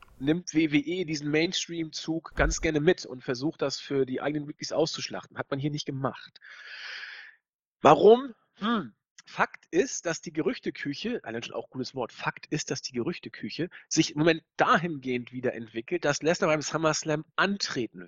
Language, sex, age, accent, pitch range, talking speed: German, male, 40-59, German, 130-175 Hz, 165 wpm